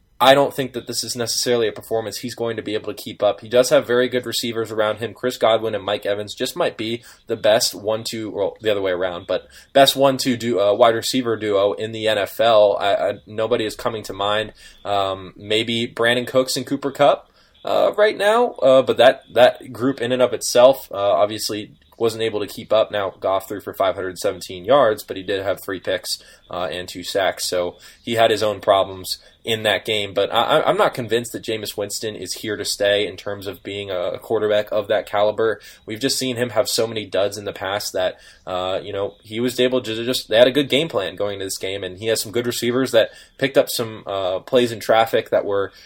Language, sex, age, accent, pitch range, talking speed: English, male, 20-39, American, 105-120 Hz, 230 wpm